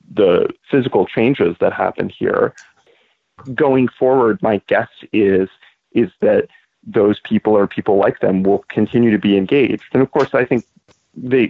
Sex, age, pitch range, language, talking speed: male, 30-49, 100-115 Hz, English, 155 wpm